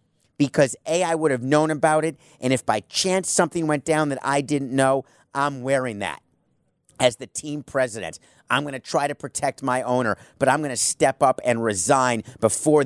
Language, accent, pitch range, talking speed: English, American, 120-150 Hz, 200 wpm